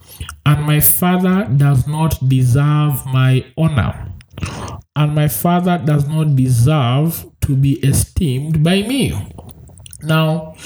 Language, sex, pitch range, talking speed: English, male, 115-165 Hz, 115 wpm